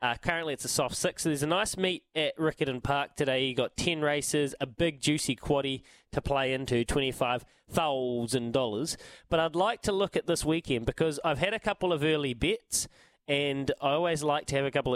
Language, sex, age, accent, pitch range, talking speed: English, male, 20-39, Australian, 130-160 Hz, 205 wpm